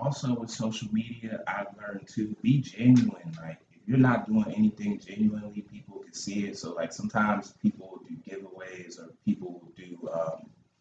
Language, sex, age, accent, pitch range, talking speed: English, male, 20-39, American, 100-130 Hz, 165 wpm